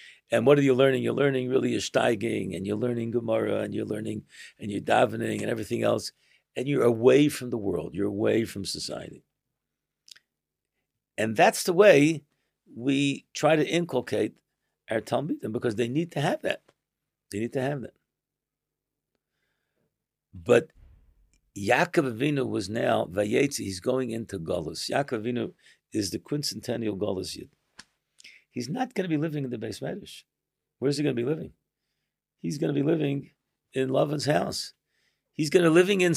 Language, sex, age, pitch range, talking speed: English, male, 60-79, 115-160 Hz, 165 wpm